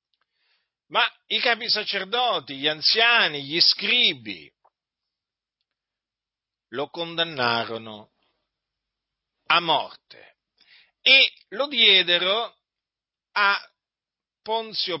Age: 50-69